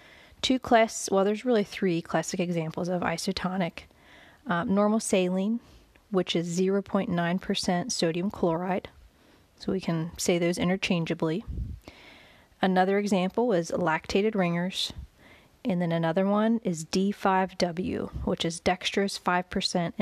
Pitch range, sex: 175-210 Hz, female